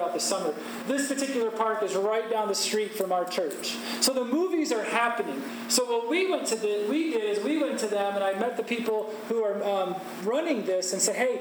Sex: male